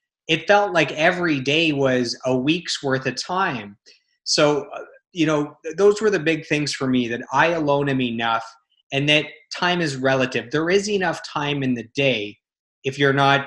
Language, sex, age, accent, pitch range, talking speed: English, male, 20-39, American, 125-150 Hz, 185 wpm